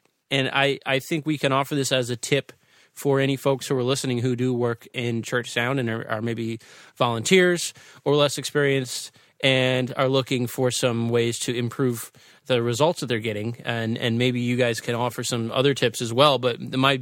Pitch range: 120-140 Hz